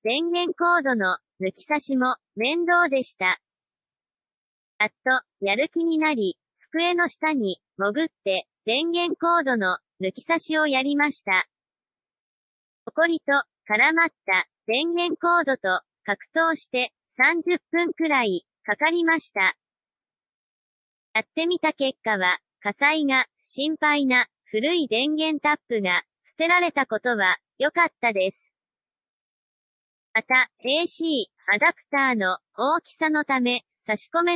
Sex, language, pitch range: male, Japanese, 220-330 Hz